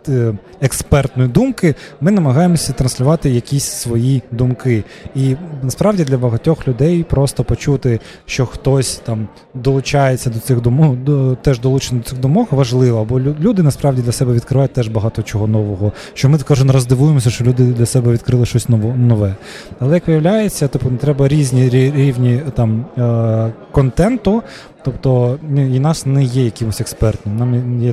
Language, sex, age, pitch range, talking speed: Ukrainian, male, 20-39, 115-135 Hz, 145 wpm